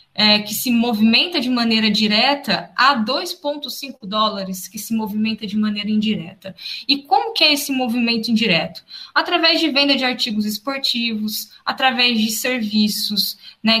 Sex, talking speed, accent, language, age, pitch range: female, 140 wpm, Brazilian, Portuguese, 10-29, 200-250 Hz